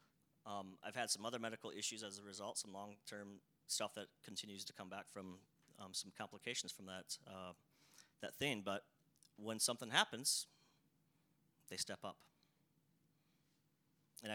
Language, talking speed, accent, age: English, 145 wpm, American, 30-49